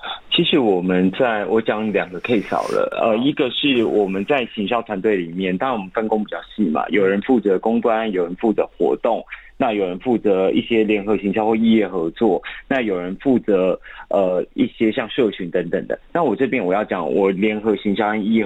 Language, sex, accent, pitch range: Chinese, male, native, 100-120 Hz